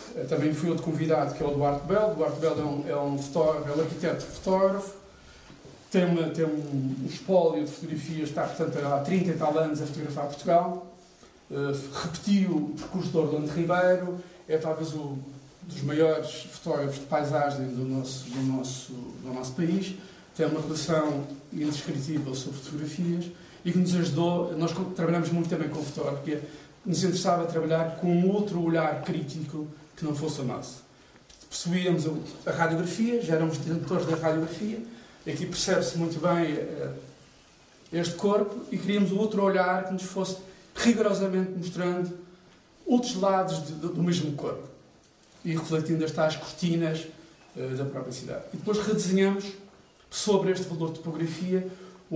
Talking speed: 155 wpm